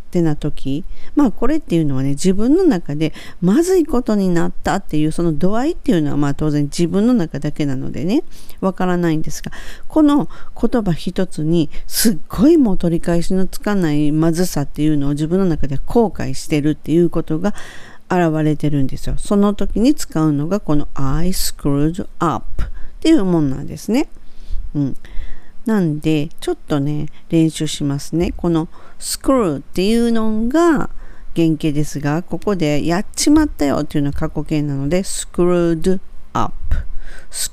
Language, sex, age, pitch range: Japanese, female, 50-69, 150-190 Hz